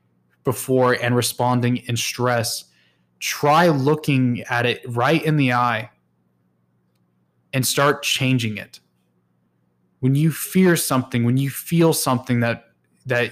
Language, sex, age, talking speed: English, male, 20-39, 120 wpm